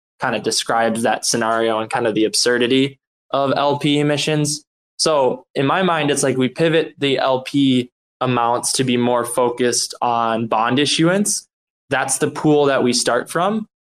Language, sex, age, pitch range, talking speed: English, male, 10-29, 120-150 Hz, 165 wpm